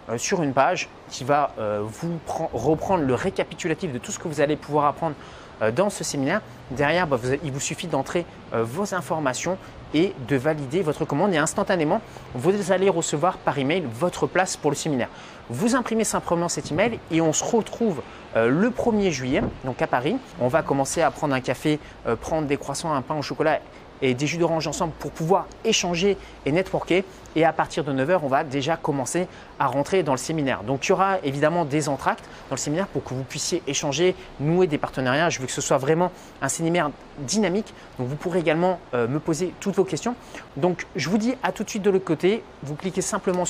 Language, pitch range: French, 140-185 Hz